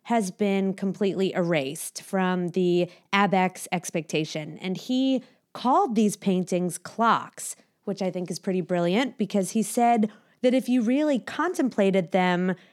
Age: 20-39